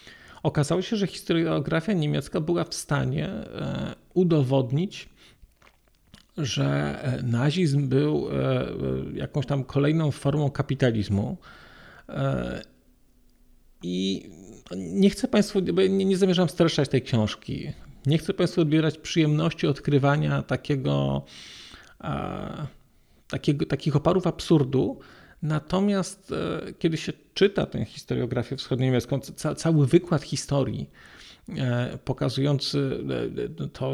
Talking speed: 90 wpm